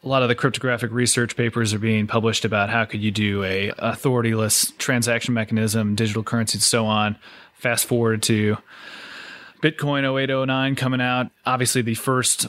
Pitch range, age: 110-130 Hz, 30-49